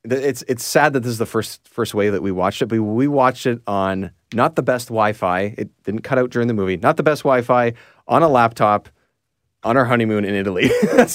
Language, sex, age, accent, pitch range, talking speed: English, male, 30-49, American, 105-135 Hz, 230 wpm